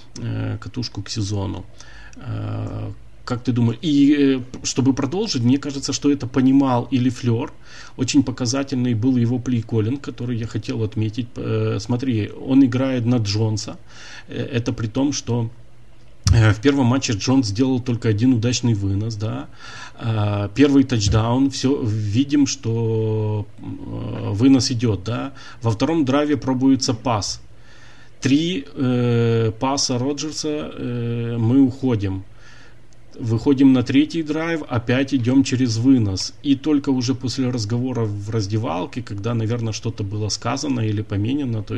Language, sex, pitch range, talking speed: Russian, male, 110-130 Hz, 125 wpm